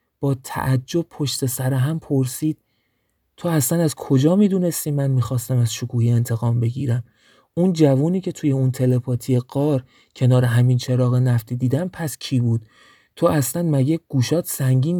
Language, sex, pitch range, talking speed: Persian, male, 120-150 Hz, 150 wpm